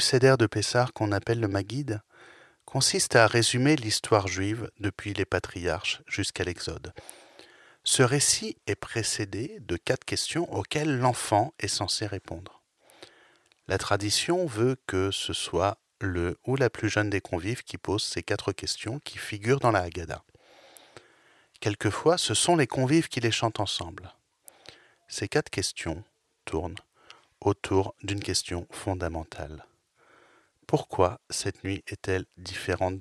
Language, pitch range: French, 95-125 Hz